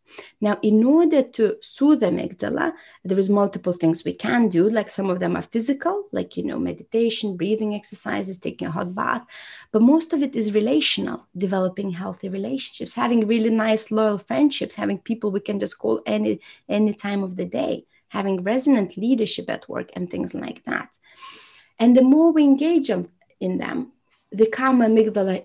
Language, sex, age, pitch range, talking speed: English, female, 30-49, 210-260 Hz, 175 wpm